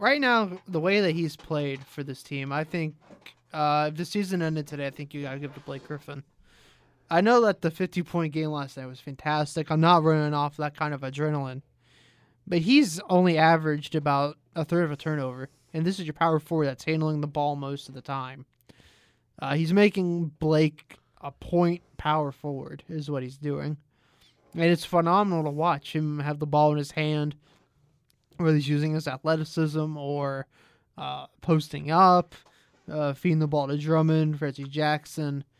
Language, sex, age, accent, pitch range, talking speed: English, male, 20-39, American, 145-165 Hz, 185 wpm